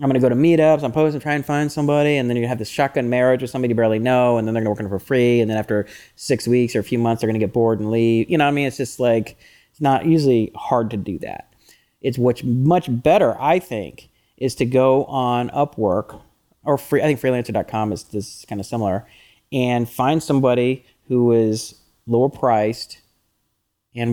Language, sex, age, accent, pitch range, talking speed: English, male, 30-49, American, 110-140 Hz, 225 wpm